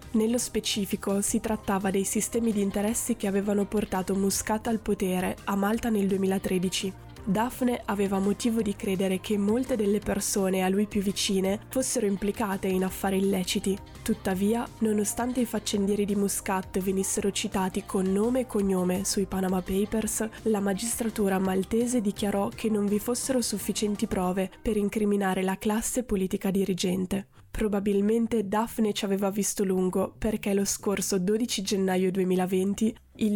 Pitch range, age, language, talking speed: 195-220 Hz, 10-29, Italian, 145 wpm